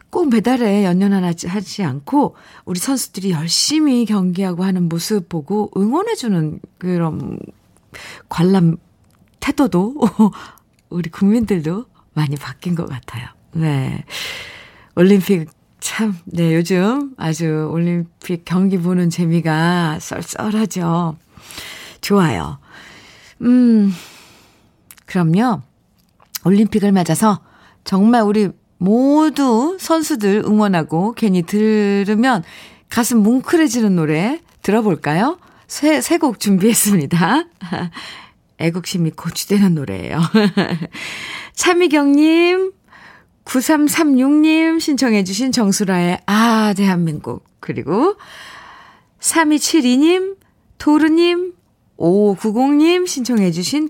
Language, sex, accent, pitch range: Korean, female, native, 175-270 Hz